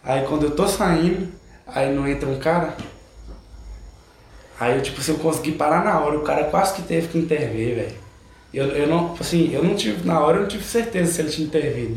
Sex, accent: male, Brazilian